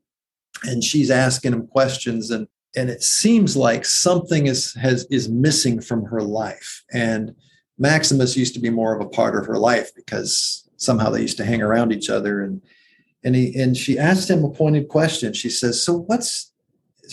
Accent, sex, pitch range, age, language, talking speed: American, male, 120-155 Hz, 50-69, English, 190 wpm